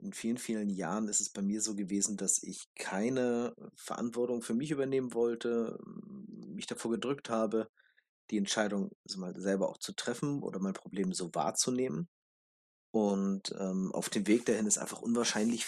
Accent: German